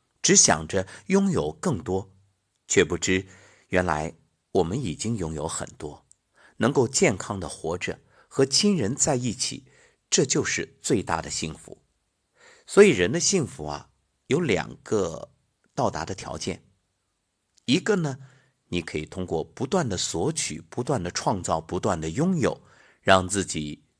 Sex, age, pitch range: male, 50-69, 90-135 Hz